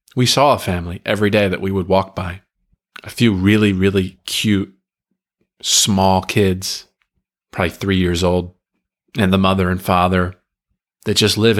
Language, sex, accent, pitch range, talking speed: English, male, American, 95-125 Hz, 155 wpm